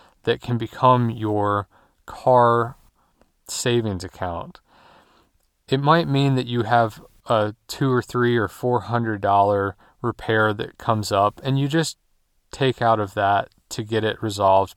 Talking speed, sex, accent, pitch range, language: 140 wpm, male, American, 105-130 Hz, English